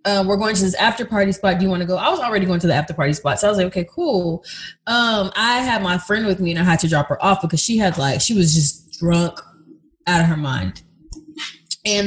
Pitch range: 170-225 Hz